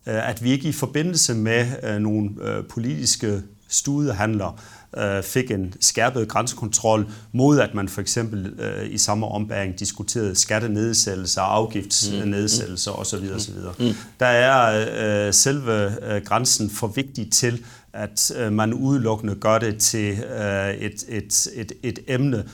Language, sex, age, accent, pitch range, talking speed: Danish, male, 40-59, native, 105-125 Hz, 115 wpm